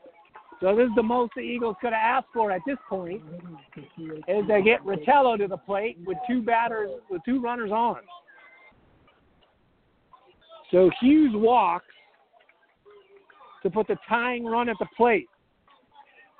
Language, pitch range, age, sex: English, 240-350 Hz, 50-69, male